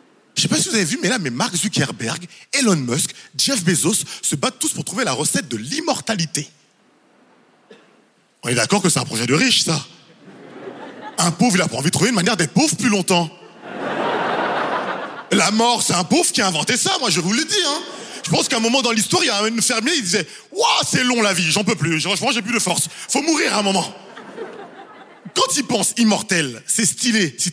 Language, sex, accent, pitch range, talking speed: French, male, French, 175-240 Hz, 235 wpm